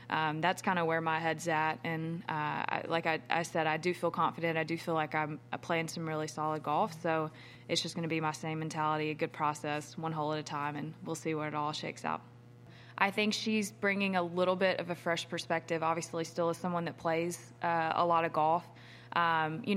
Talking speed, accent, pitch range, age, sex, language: 235 wpm, American, 155-175 Hz, 20-39, female, English